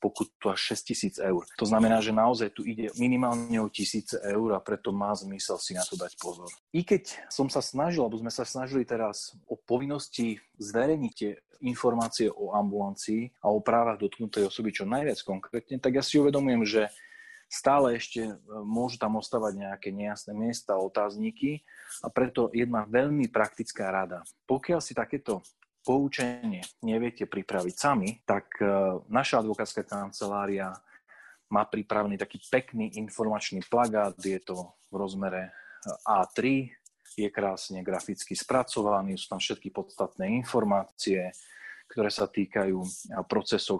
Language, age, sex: Slovak, 30-49, male